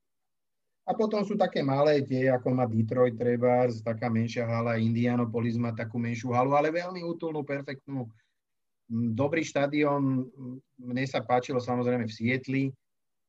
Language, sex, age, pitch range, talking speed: Slovak, male, 30-49, 110-130 Hz, 135 wpm